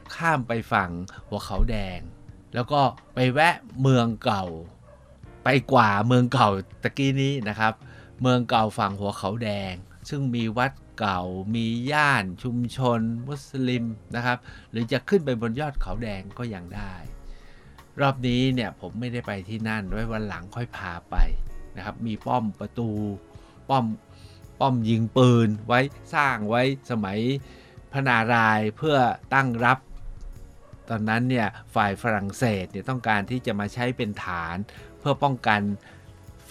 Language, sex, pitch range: Thai, male, 100-125 Hz